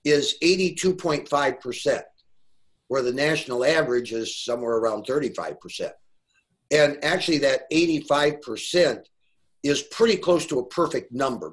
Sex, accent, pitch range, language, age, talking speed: male, American, 125-180 Hz, English, 50-69, 110 wpm